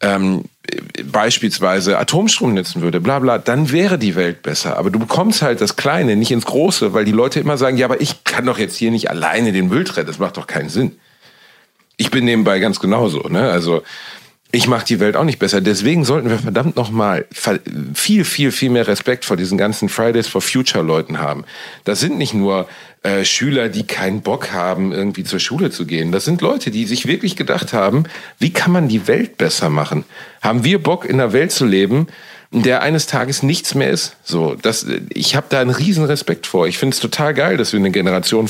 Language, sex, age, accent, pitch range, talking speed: German, male, 40-59, German, 105-155 Hz, 210 wpm